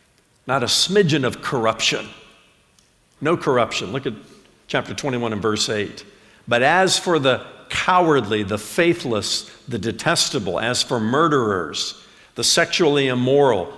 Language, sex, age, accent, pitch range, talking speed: English, male, 50-69, American, 120-180 Hz, 125 wpm